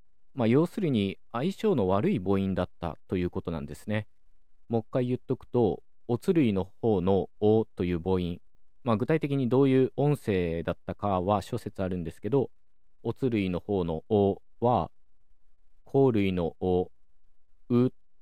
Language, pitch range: Japanese, 90-120 Hz